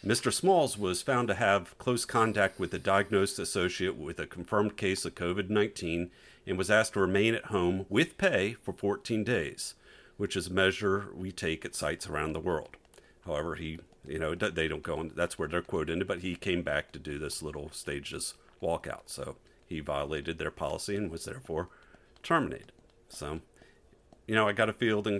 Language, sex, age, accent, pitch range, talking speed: English, male, 50-69, American, 85-110 Hz, 190 wpm